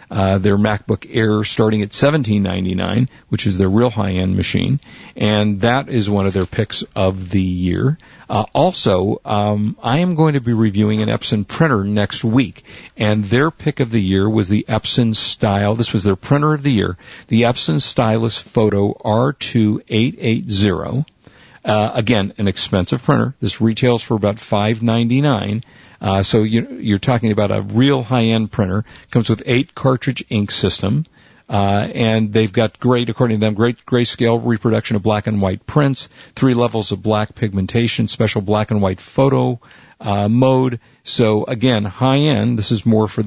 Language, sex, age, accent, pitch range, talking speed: English, male, 50-69, American, 105-125 Hz, 170 wpm